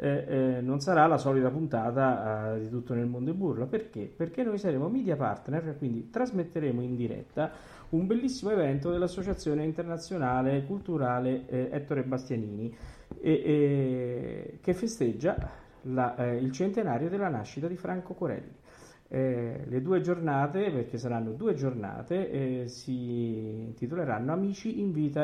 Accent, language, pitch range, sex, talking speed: native, Italian, 120-160 Hz, male, 145 wpm